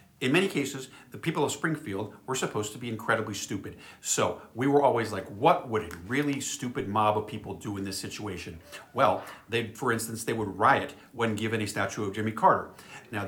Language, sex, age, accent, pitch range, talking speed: English, male, 50-69, American, 100-140 Hz, 205 wpm